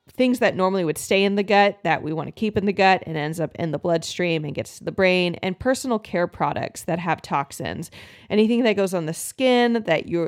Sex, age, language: female, 30-49, English